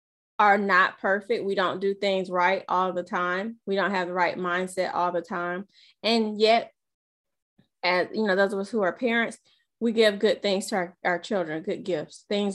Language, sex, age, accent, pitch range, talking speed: English, female, 20-39, American, 185-230 Hz, 200 wpm